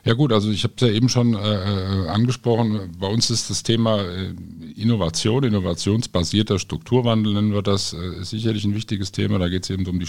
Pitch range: 80-100 Hz